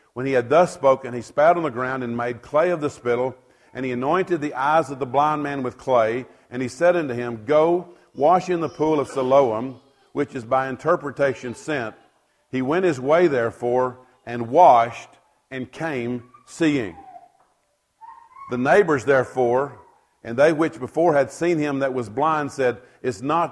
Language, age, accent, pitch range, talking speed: English, 50-69, American, 125-160 Hz, 180 wpm